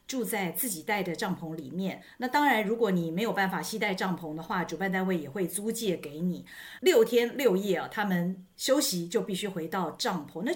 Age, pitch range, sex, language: 50-69, 175-245 Hz, female, Chinese